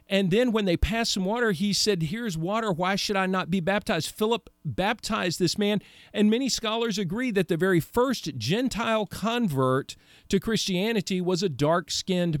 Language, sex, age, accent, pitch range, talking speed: English, male, 40-59, American, 160-215 Hz, 175 wpm